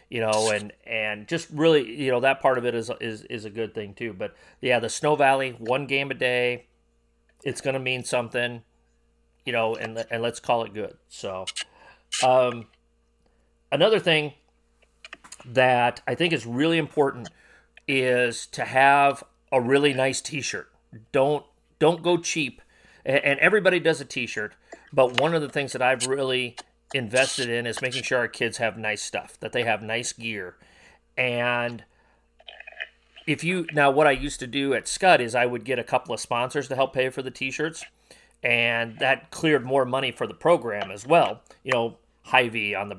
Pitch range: 115-140 Hz